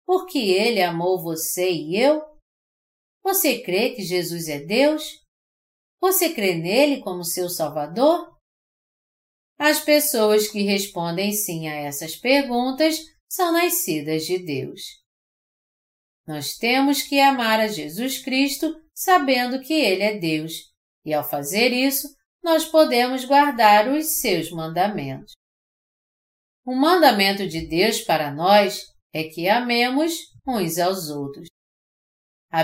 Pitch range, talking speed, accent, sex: 165-275 Hz, 120 wpm, Brazilian, female